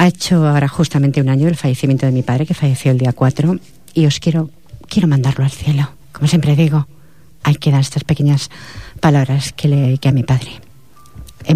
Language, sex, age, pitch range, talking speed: Spanish, female, 40-59, 130-155 Hz, 200 wpm